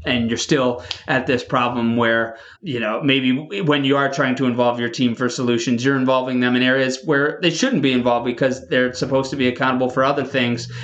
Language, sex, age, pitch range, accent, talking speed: English, male, 30-49, 120-145 Hz, American, 215 wpm